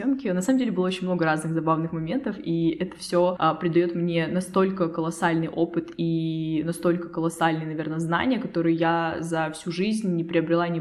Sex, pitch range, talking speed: female, 165-185 Hz, 170 wpm